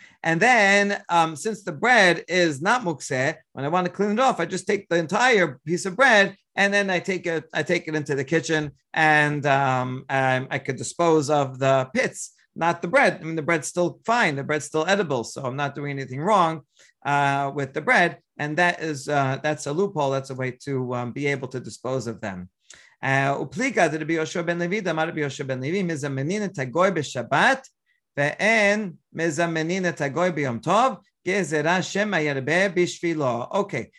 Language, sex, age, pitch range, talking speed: English, male, 40-59, 145-190 Hz, 160 wpm